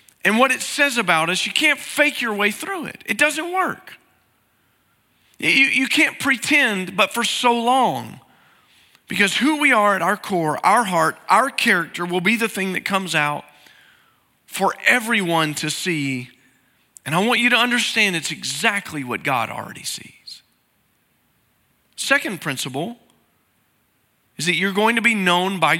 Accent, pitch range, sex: American, 185-250 Hz, male